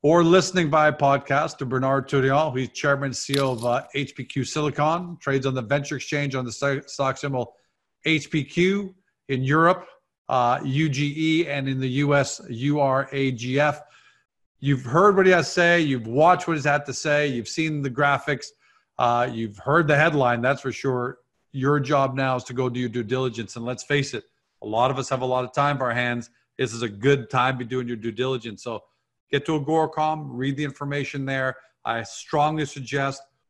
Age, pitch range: 40-59, 125-145 Hz